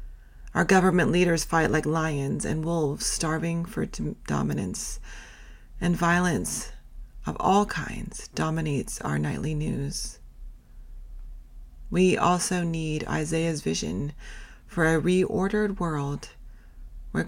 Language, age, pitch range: English, 40-59, 140-185 Hz